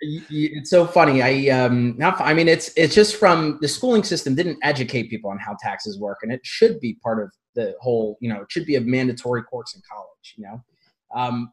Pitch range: 120-150 Hz